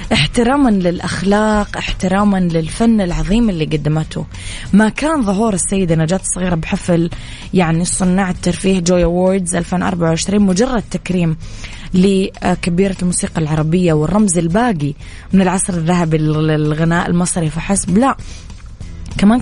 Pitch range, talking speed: 160-195 Hz, 110 wpm